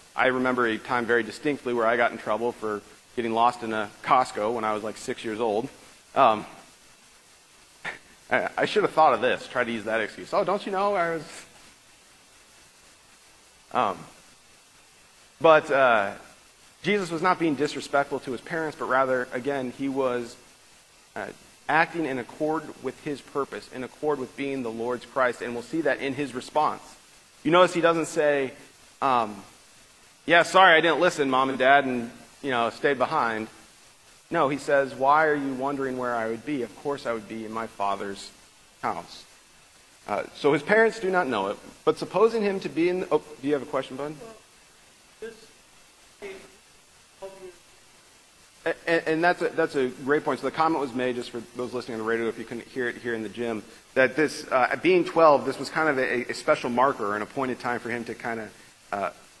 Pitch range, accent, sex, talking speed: 120-155 Hz, American, male, 195 wpm